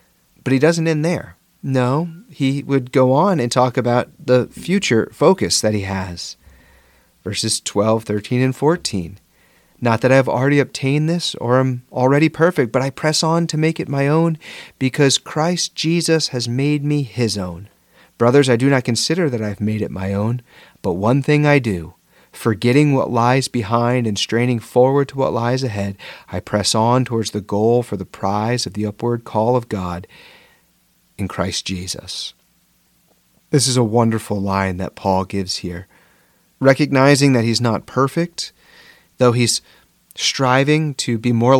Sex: male